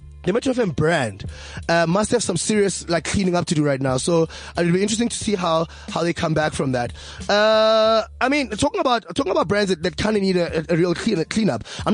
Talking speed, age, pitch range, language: 245 wpm, 20-39, 155-195 Hz, English